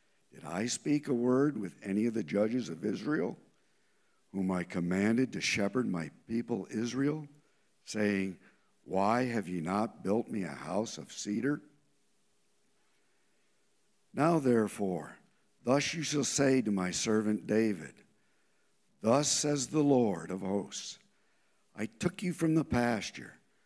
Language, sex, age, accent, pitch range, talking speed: English, male, 60-79, American, 110-145 Hz, 135 wpm